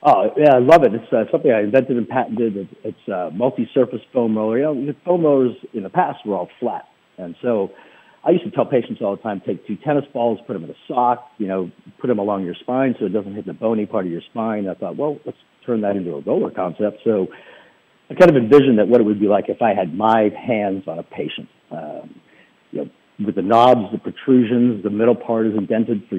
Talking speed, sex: 245 wpm, male